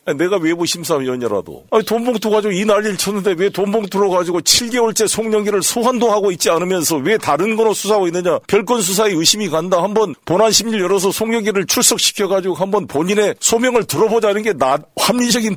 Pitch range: 160-215 Hz